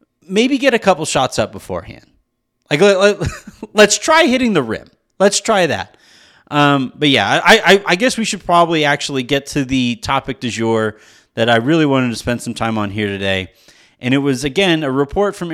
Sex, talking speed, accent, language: male, 195 wpm, American, English